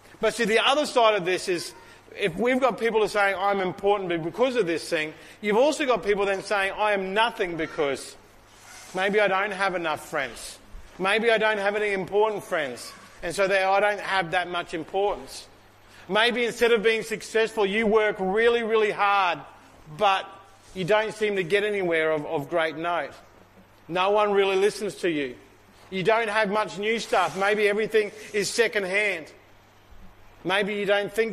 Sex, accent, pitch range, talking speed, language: male, Australian, 170-215 Hz, 180 wpm, English